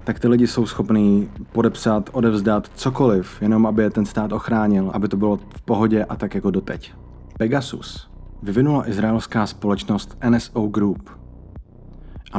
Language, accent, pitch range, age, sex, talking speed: Czech, native, 100-115 Hz, 30-49, male, 145 wpm